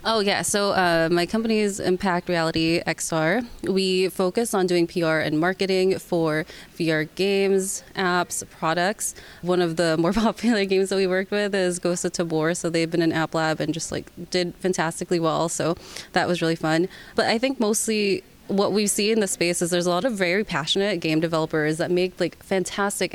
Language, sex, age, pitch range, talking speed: English, female, 20-39, 170-200 Hz, 195 wpm